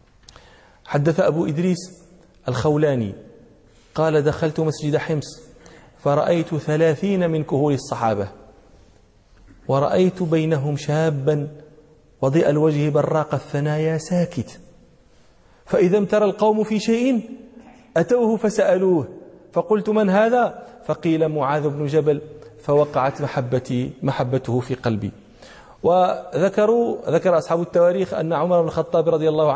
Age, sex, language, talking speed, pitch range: 40-59, male, Arabic, 100 wpm, 145-185 Hz